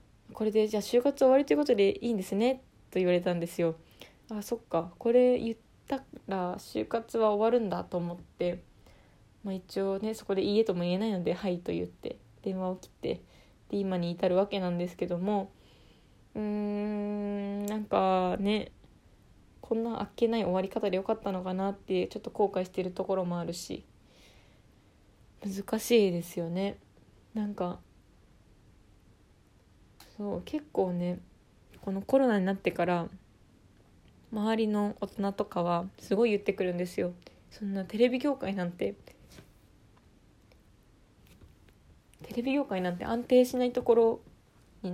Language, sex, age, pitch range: Japanese, female, 20-39, 170-220 Hz